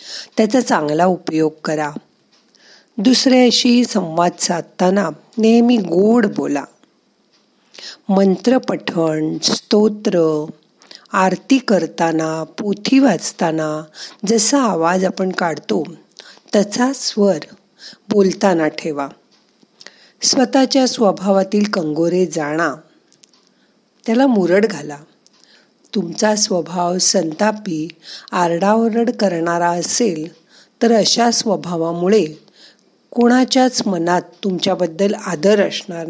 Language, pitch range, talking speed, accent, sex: Marathi, 170-225 Hz, 70 wpm, native, female